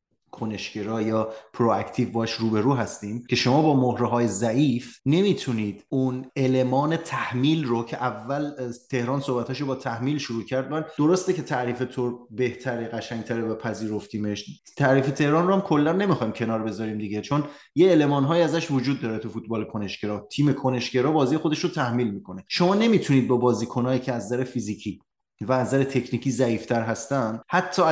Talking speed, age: 160 wpm, 30-49